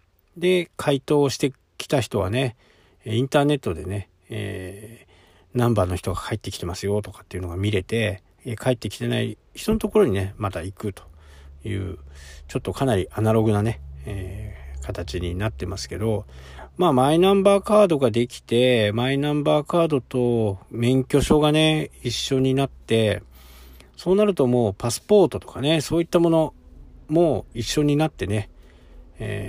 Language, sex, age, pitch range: Japanese, male, 40-59, 95-130 Hz